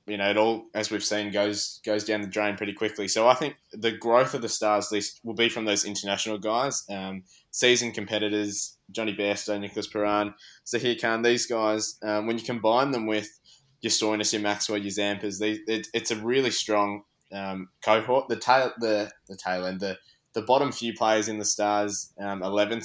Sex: male